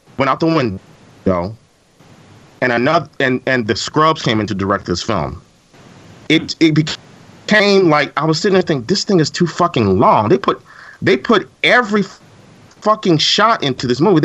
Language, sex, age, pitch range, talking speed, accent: English, male, 30-49, 140-185 Hz, 175 wpm, American